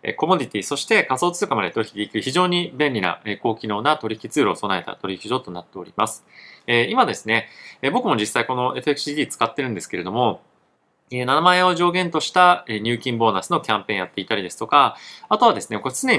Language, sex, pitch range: Japanese, male, 105-150 Hz